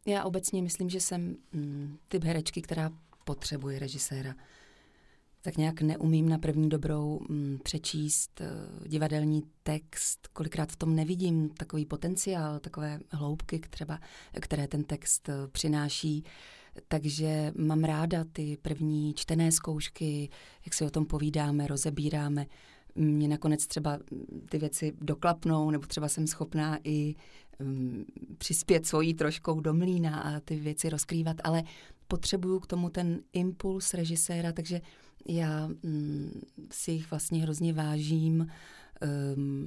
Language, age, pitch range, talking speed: Czech, 30-49, 150-170 Hz, 125 wpm